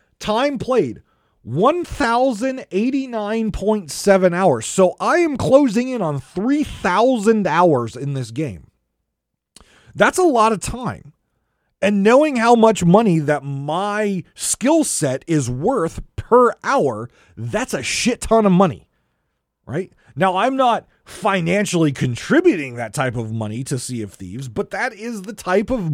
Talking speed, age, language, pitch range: 135 wpm, 30-49, English, 140-225 Hz